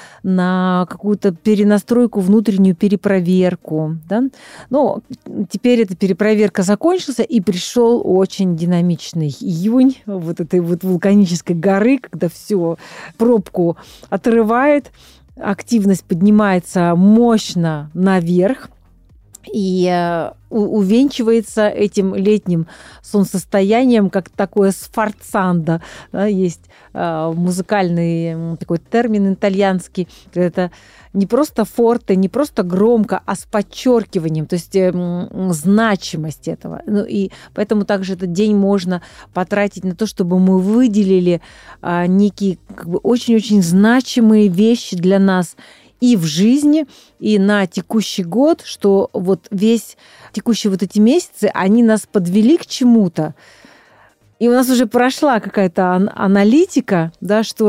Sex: female